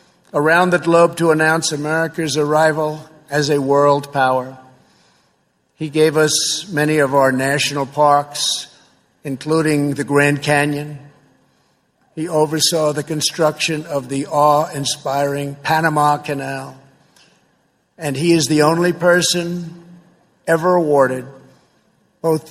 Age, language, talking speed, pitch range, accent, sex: 50-69, English, 110 wpm, 145-165 Hz, American, male